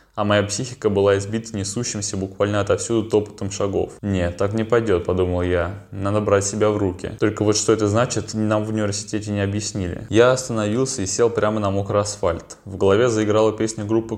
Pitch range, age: 100-115 Hz, 20-39